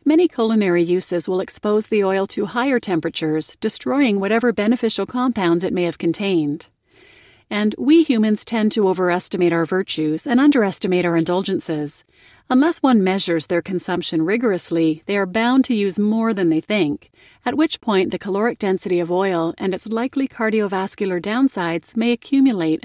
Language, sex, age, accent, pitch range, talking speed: English, female, 40-59, American, 175-235 Hz, 160 wpm